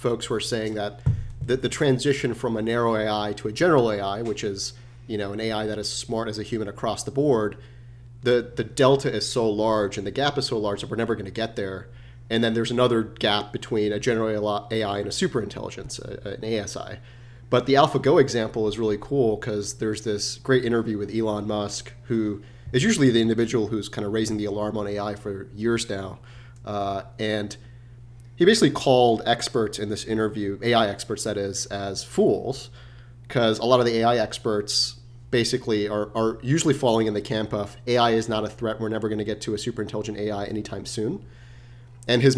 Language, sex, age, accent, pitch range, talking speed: English, male, 30-49, American, 105-120 Hz, 205 wpm